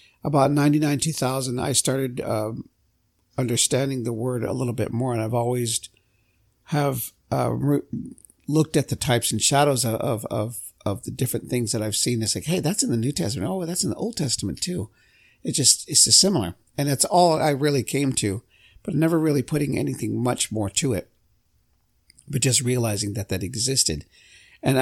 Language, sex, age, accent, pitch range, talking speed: English, male, 50-69, American, 110-140 Hz, 190 wpm